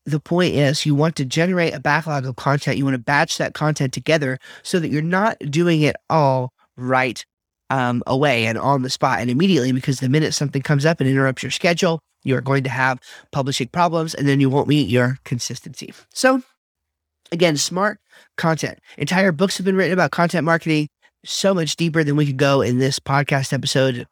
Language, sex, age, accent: English, male, 30-49, American